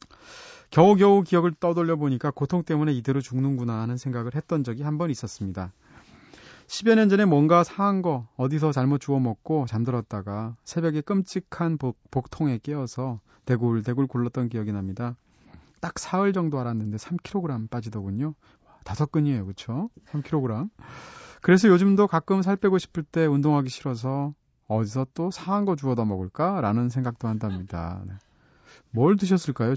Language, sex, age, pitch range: Korean, male, 30-49, 110-170 Hz